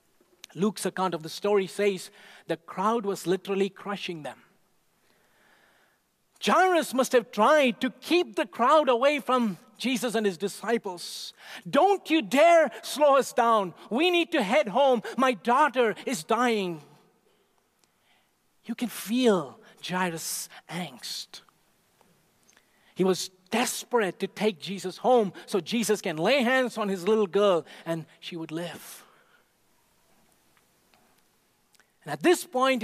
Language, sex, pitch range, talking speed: English, male, 175-240 Hz, 125 wpm